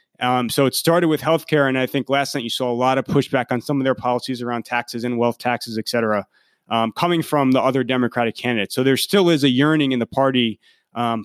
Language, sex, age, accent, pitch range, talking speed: English, male, 30-49, American, 115-140 Hz, 245 wpm